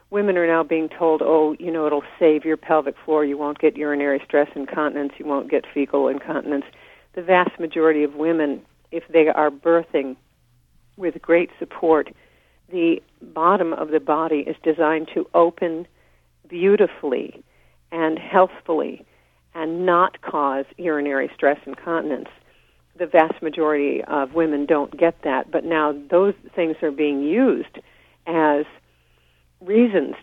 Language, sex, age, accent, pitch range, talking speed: English, female, 50-69, American, 145-175 Hz, 140 wpm